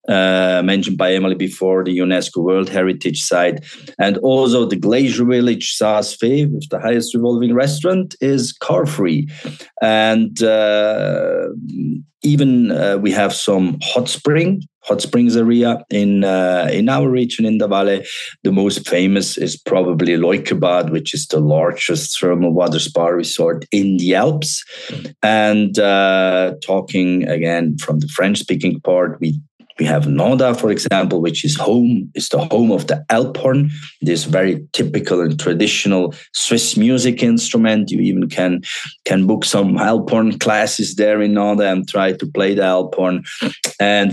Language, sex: English, male